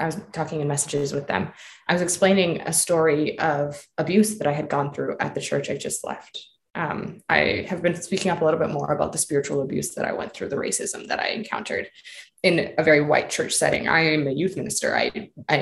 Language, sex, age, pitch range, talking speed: English, female, 20-39, 155-195 Hz, 235 wpm